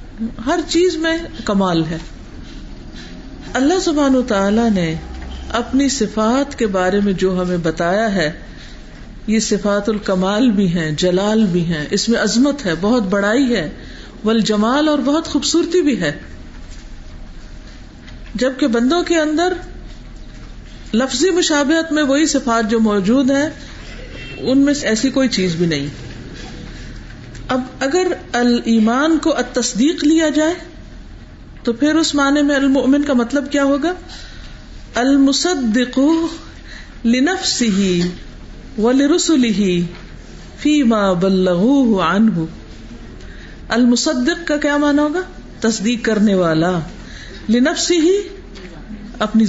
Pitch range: 195-290 Hz